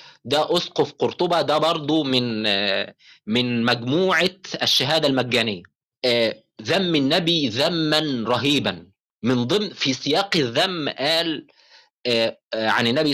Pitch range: 135-180 Hz